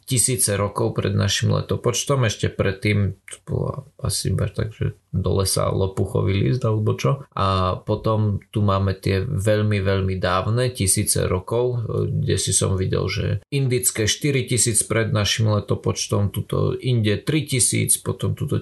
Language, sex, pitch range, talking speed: Slovak, male, 105-125 Hz, 130 wpm